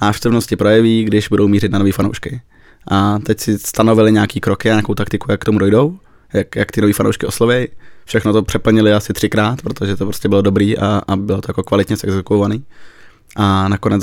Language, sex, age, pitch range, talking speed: English, male, 20-39, 100-110 Hz, 195 wpm